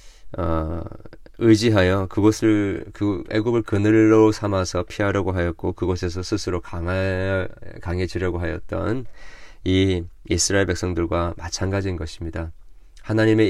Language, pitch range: Korean, 85-110 Hz